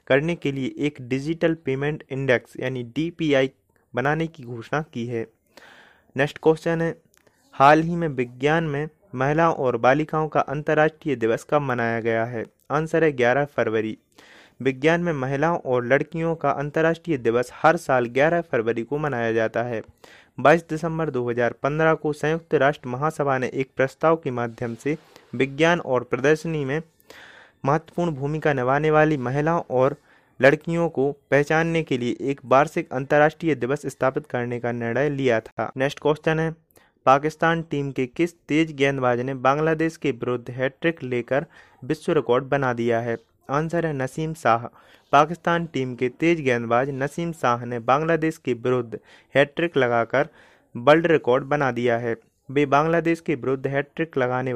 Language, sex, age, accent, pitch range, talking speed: Hindi, male, 30-49, native, 125-160 Hz, 150 wpm